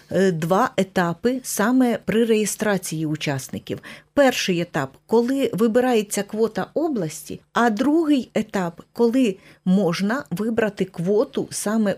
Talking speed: 115 wpm